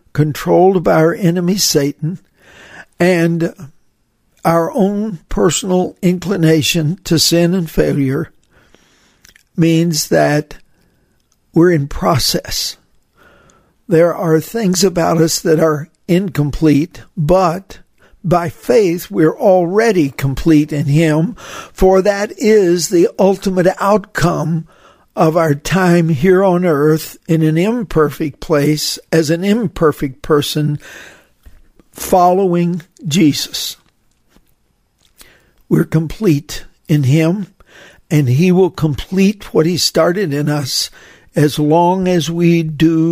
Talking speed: 105 wpm